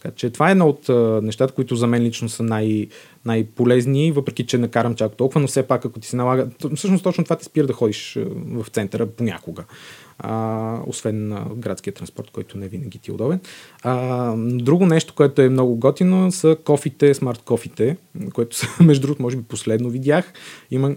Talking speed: 185 wpm